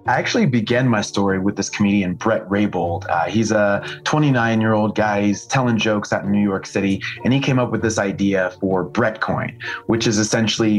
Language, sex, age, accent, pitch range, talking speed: English, male, 30-49, American, 95-115 Hz, 195 wpm